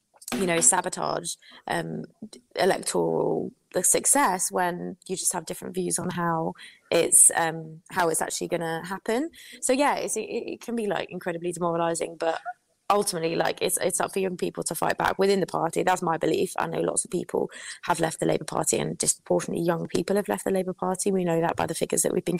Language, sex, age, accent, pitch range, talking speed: English, female, 20-39, British, 165-195 Hz, 210 wpm